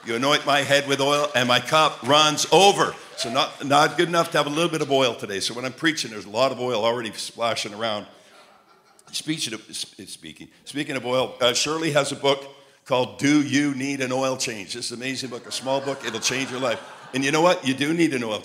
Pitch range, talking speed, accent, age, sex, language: 125-145 Hz, 240 wpm, American, 60-79, male, English